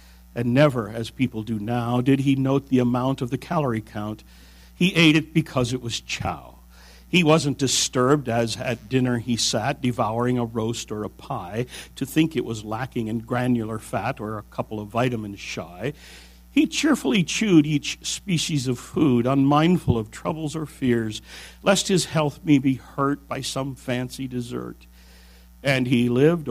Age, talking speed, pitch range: 60-79, 170 wpm, 90-145 Hz